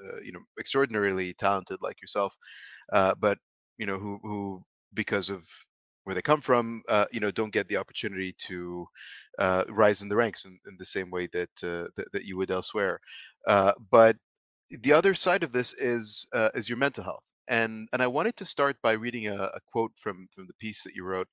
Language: English